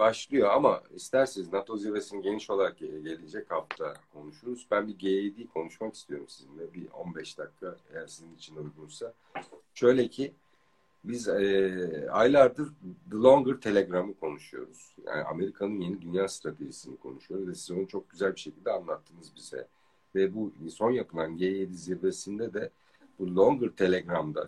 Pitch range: 90-125 Hz